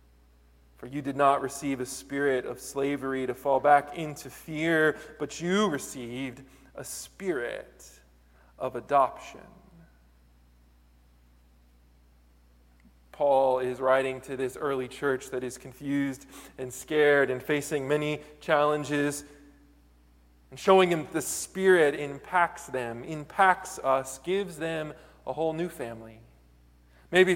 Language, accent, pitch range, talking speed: English, American, 120-165 Hz, 115 wpm